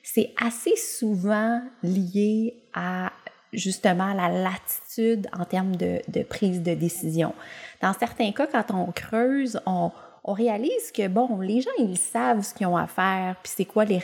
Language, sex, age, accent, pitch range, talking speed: English, female, 30-49, Canadian, 185-235 Hz, 165 wpm